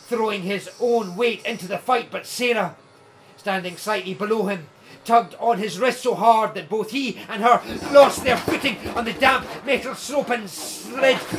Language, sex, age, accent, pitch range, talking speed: English, male, 40-59, British, 180-230 Hz, 180 wpm